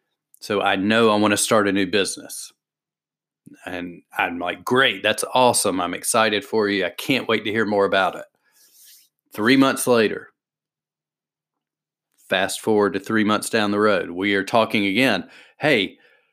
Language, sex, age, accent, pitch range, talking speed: English, male, 40-59, American, 100-120 Hz, 160 wpm